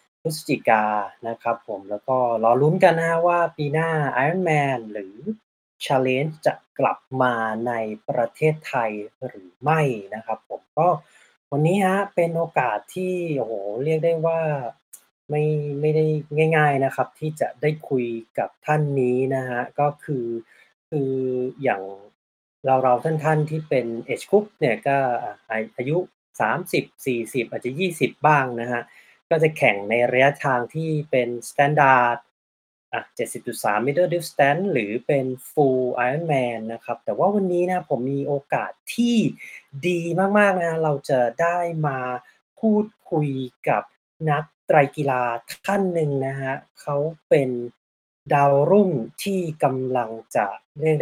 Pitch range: 120-160 Hz